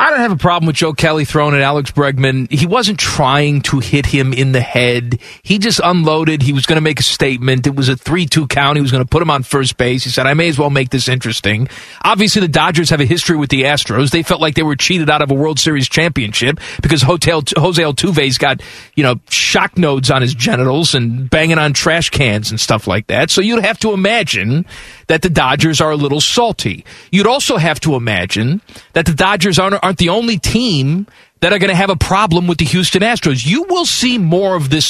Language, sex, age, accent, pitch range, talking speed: English, male, 40-59, American, 135-185 Hz, 230 wpm